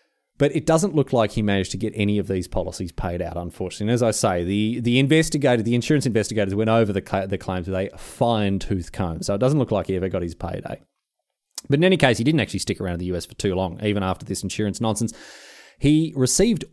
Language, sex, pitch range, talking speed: English, male, 100-135 Hz, 245 wpm